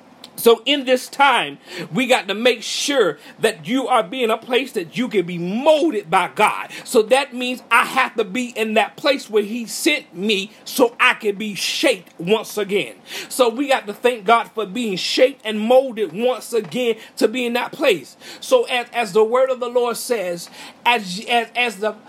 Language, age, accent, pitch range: English, 40-59, American, 205-255 Hz